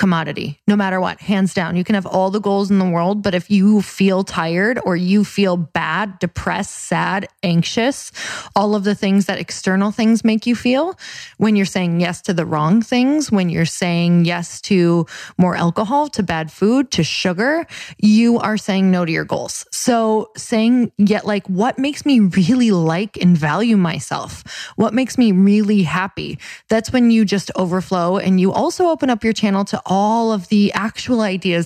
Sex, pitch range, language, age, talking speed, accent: female, 175-215 Hz, English, 20-39, 190 wpm, American